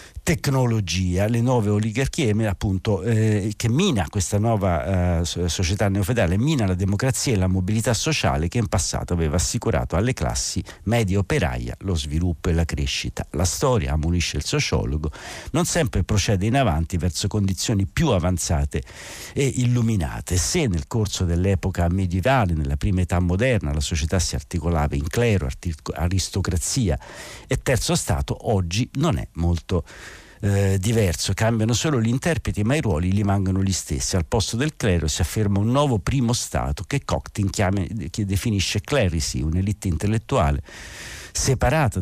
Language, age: Italian, 60-79